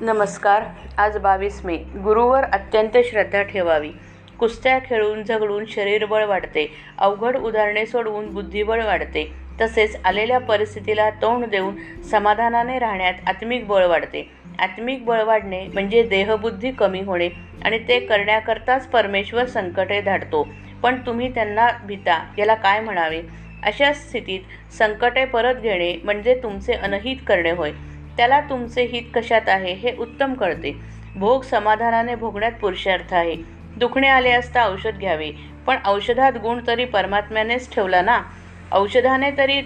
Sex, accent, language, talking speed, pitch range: female, native, Marathi, 90 wpm, 190-235 Hz